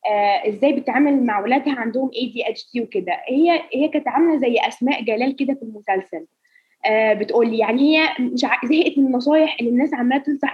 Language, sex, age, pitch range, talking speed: Arabic, female, 20-39, 255-335 Hz, 190 wpm